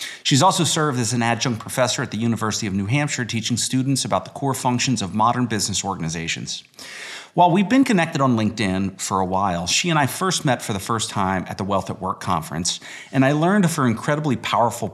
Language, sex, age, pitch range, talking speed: English, male, 30-49, 95-135 Hz, 215 wpm